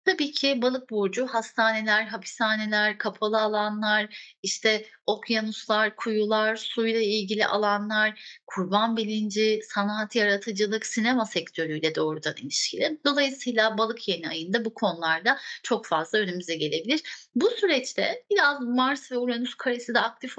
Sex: female